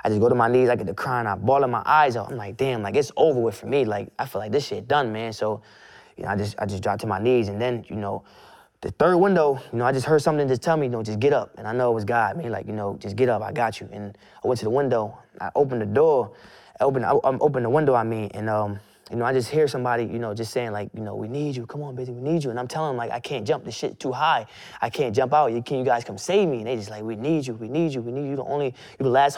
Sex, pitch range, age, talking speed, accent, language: male, 105-130 Hz, 20-39, 330 wpm, American, English